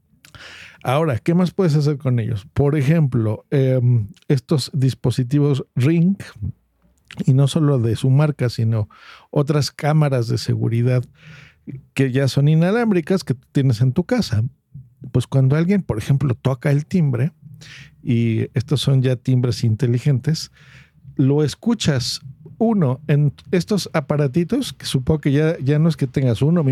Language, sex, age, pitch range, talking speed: Spanish, male, 50-69, 130-160 Hz, 145 wpm